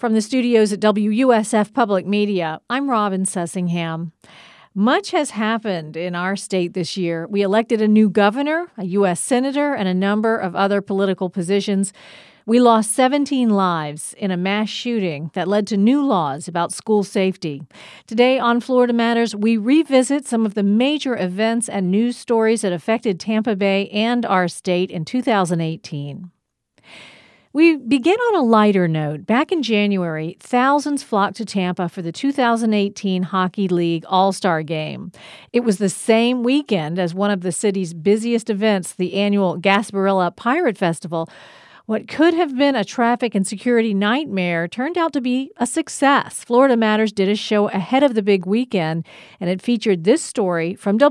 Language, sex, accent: English, female, American